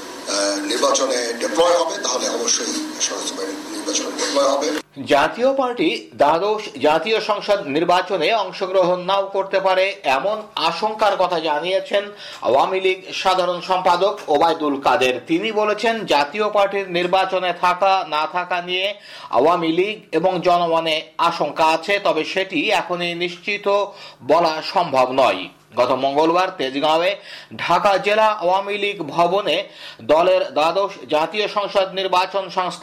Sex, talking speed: male, 80 wpm